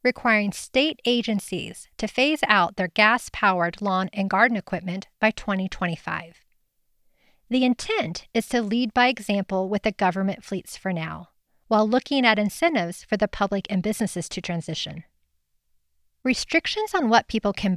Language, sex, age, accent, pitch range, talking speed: English, female, 40-59, American, 190-255 Hz, 145 wpm